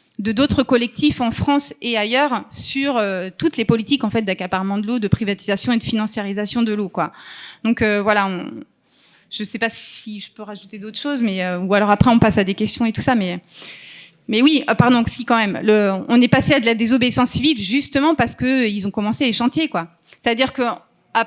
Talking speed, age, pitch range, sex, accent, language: 230 wpm, 30-49, 210-260 Hz, female, French, French